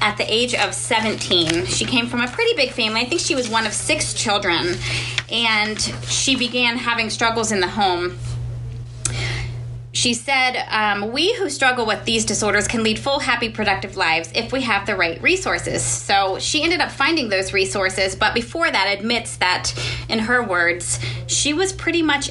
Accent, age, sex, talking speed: American, 20-39, female, 185 wpm